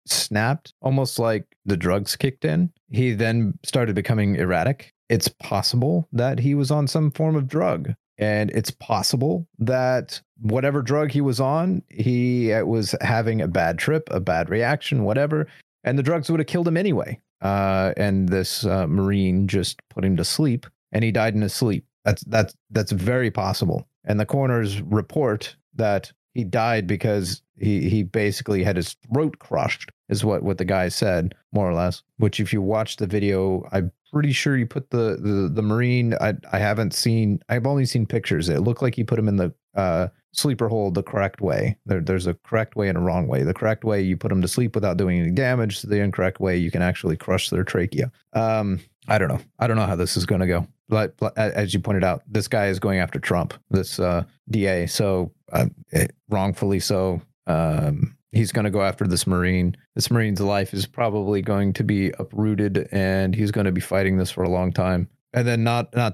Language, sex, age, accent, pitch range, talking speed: English, male, 30-49, American, 95-125 Hz, 205 wpm